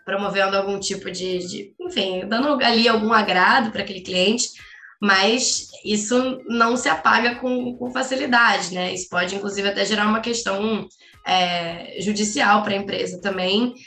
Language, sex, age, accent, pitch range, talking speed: Portuguese, female, 10-29, Brazilian, 195-230 Hz, 145 wpm